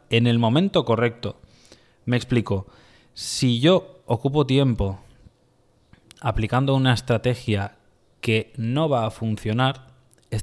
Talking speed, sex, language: 110 wpm, male, Spanish